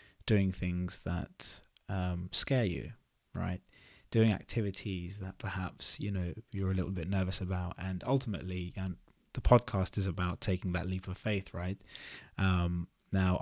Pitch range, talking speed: 90-105 Hz, 150 wpm